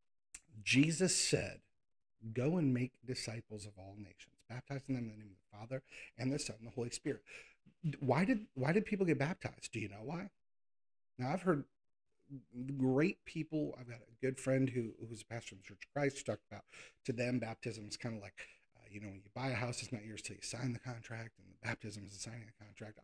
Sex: male